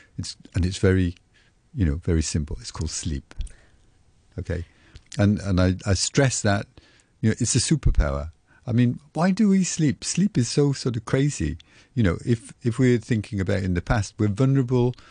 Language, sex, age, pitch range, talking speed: English, male, 50-69, 90-120 Hz, 185 wpm